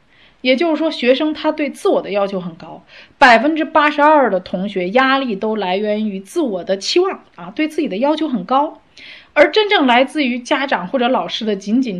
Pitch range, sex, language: 180-245 Hz, female, Chinese